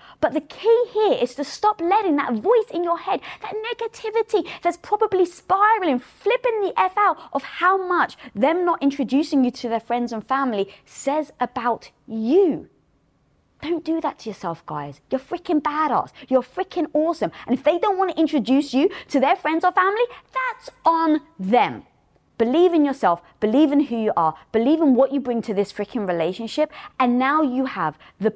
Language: English